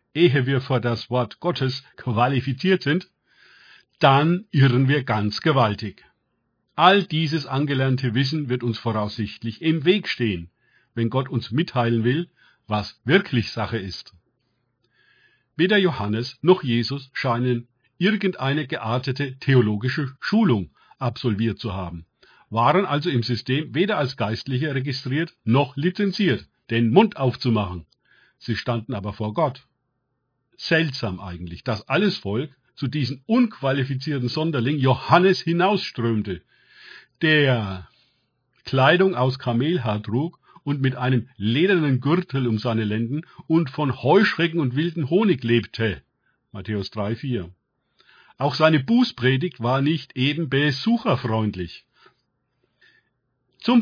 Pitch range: 115-155 Hz